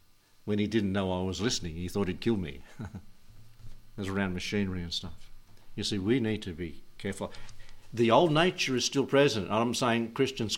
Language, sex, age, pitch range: English, male, 60-79, 105-125 Hz